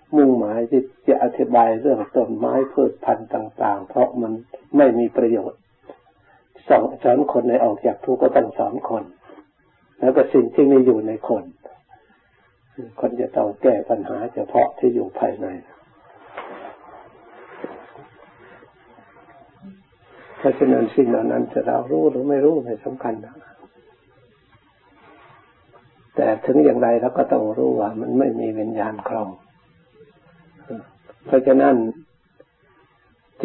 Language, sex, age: Thai, male, 60-79